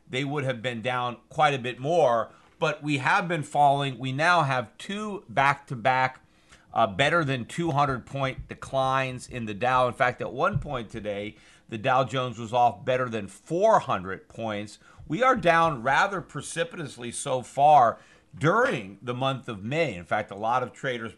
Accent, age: American, 40-59